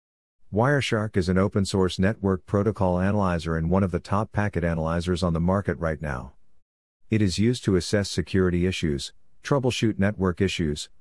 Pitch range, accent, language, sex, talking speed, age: 85-105 Hz, American, English, male, 160 wpm, 50-69